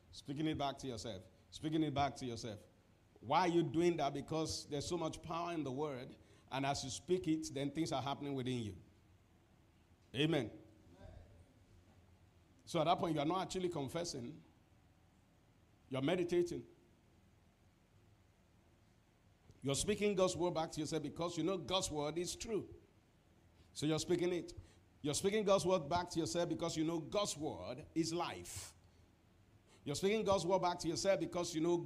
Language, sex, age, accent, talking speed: English, male, 50-69, Nigerian, 165 wpm